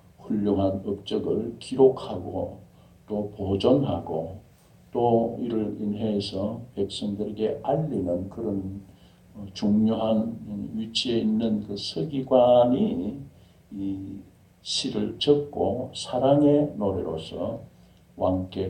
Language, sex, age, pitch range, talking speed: English, male, 60-79, 95-115 Hz, 70 wpm